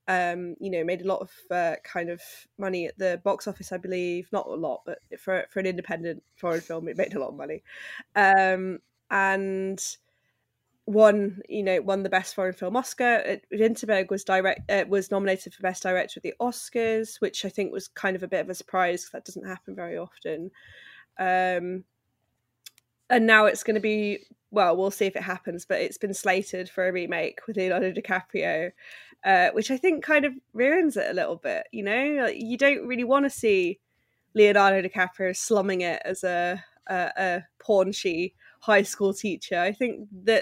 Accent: British